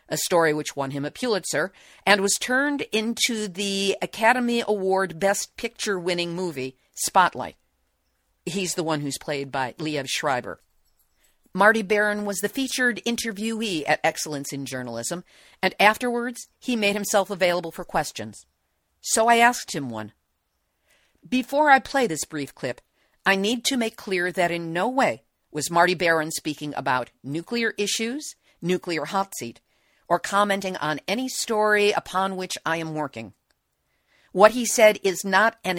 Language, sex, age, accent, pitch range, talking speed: English, female, 50-69, American, 150-215 Hz, 155 wpm